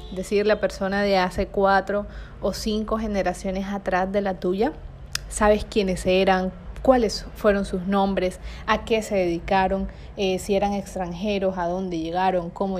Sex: female